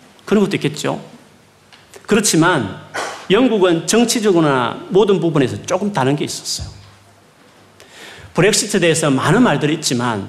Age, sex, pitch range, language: 40-59, male, 130-200 Hz, Korean